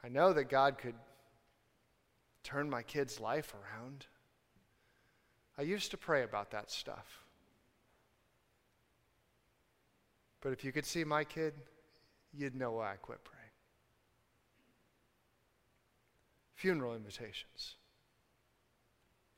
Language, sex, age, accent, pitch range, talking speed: English, male, 40-59, American, 130-220 Hz, 100 wpm